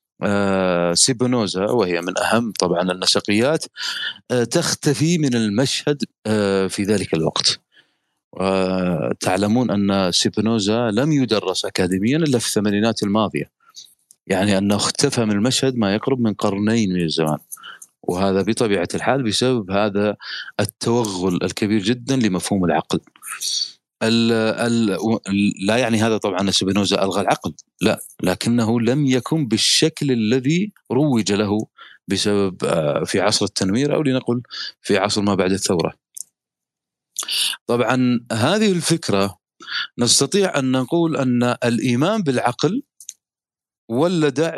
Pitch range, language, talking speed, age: 100-135 Hz, Arabic, 110 wpm, 30-49